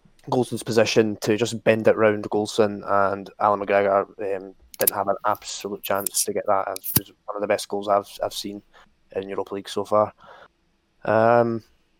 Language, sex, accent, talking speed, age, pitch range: English, male, British, 180 wpm, 20-39, 100-115 Hz